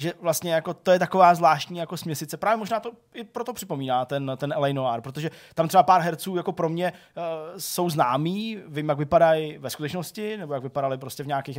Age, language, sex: 20-39, Czech, male